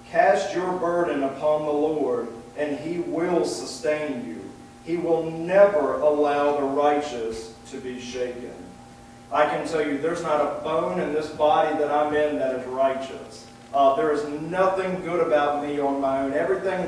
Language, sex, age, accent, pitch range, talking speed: English, male, 40-59, American, 140-170 Hz, 170 wpm